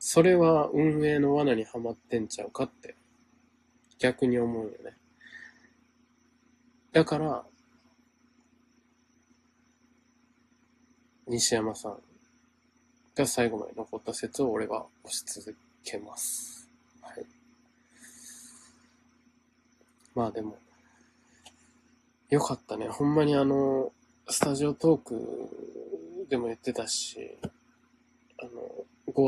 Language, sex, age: Japanese, male, 20-39